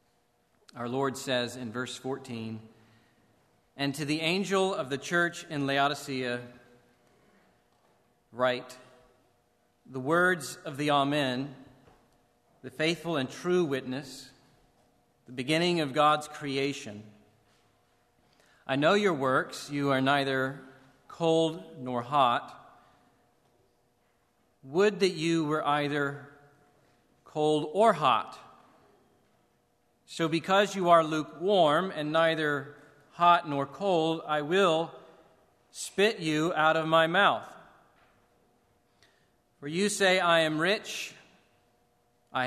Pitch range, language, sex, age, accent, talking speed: 130-170 Hz, English, male, 40-59, American, 105 wpm